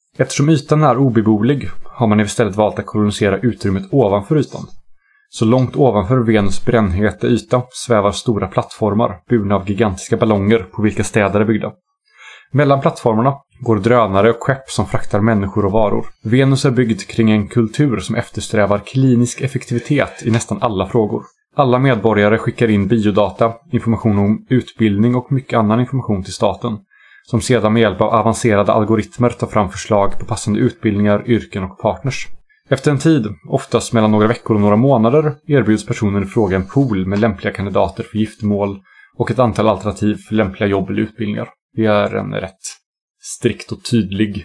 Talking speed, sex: 165 wpm, male